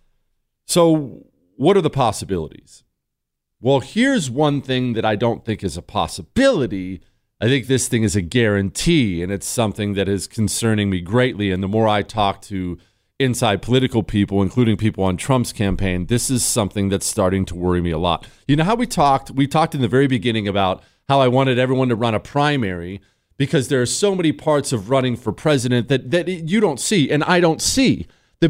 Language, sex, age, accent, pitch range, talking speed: English, male, 40-59, American, 100-150 Hz, 200 wpm